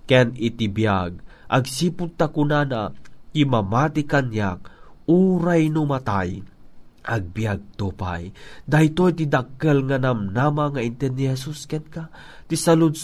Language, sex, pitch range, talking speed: Filipino, male, 110-160 Hz, 115 wpm